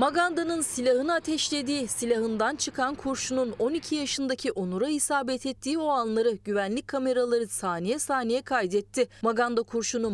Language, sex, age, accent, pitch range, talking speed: Turkish, female, 30-49, native, 220-270 Hz, 120 wpm